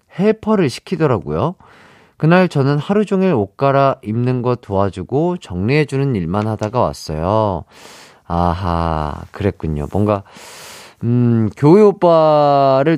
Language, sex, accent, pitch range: Korean, male, native, 100-160 Hz